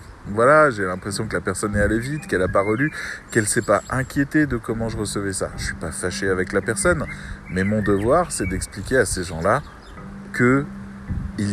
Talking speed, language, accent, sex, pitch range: 200 wpm, French, French, male, 95-120 Hz